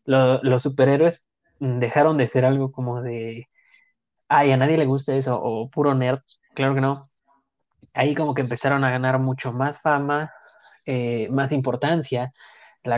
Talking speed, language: 160 wpm, Spanish